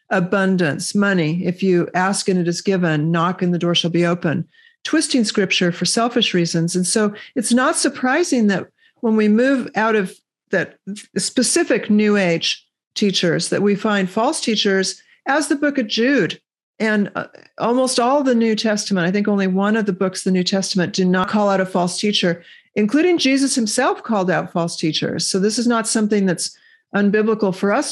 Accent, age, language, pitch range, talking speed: American, 50-69, English, 185-230 Hz, 190 wpm